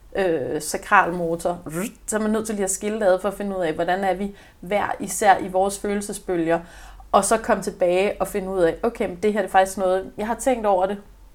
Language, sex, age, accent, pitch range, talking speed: Danish, female, 30-49, native, 170-220 Hz, 225 wpm